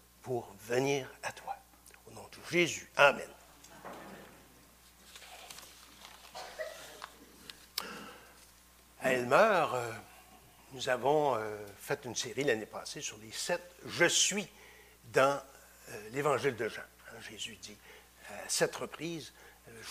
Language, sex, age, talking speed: French, male, 60-79, 105 wpm